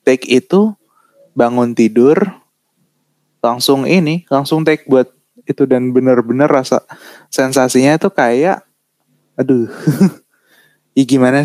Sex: male